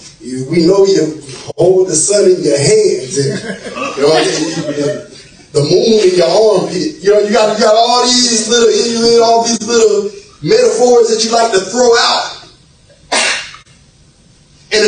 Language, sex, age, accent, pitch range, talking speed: English, male, 30-49, American, 190-270 Hz, 150 wpm